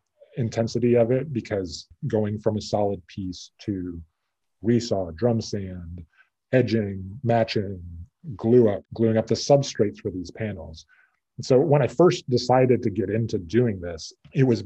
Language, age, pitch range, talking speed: English, 30-49, 95-120 Hz, 145 wpm